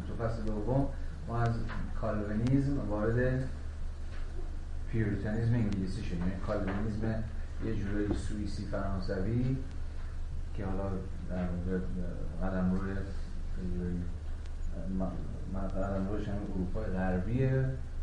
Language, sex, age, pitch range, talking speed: Persian, male, 40-59, 75-105 Hz, 75 wpm